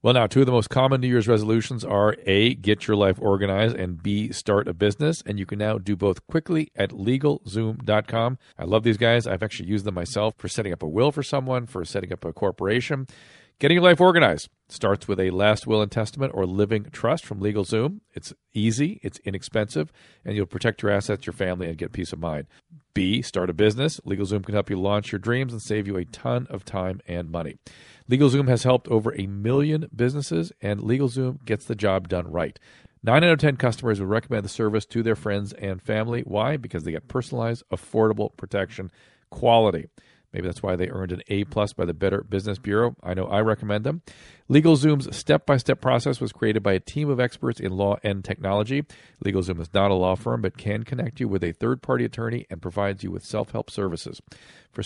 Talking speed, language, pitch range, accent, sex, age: 210 wpm, English, 100-125 Hz, American, male, 40-59